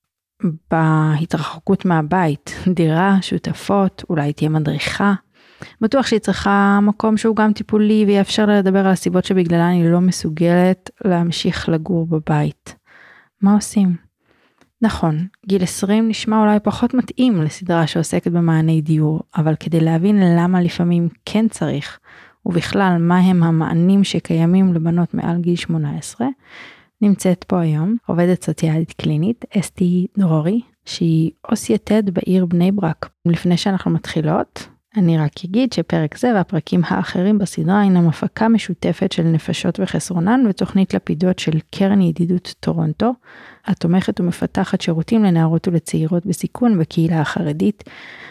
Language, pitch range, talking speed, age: Hebrew, 165-200 Hz, 125 wpm, 30-49